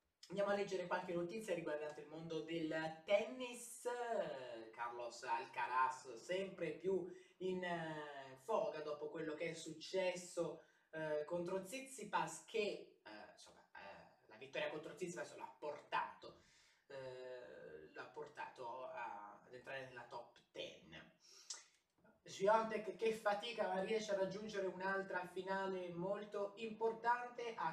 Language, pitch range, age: Italian, 155-200 Hz, 20-39